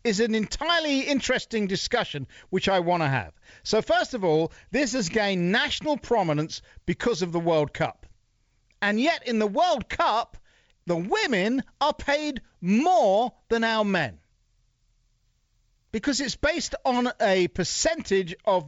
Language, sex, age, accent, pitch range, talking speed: English, male, 50-69, British, 155-245 Hz, 145 wpm